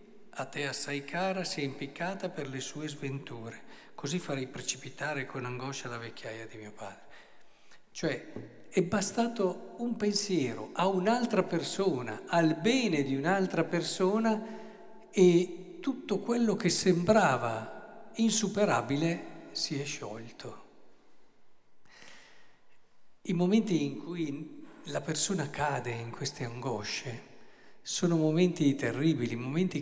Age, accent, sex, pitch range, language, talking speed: 50-69, native, male, 135-190 Hz, Italian, 115 wpm